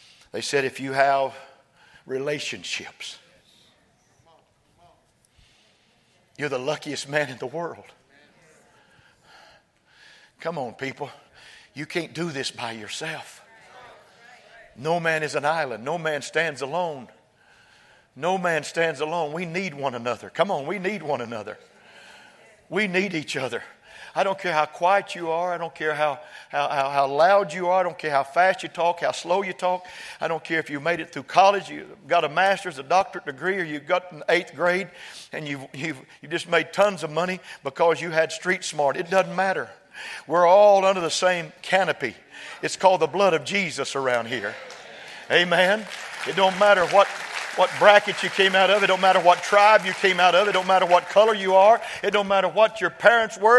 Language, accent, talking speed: English, American, 180 wpm